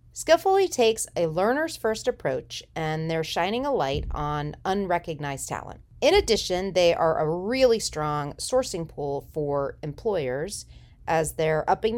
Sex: female